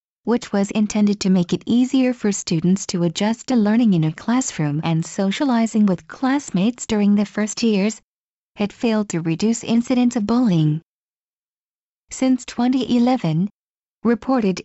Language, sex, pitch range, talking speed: English, female, 180-235 Hz, 140 wpm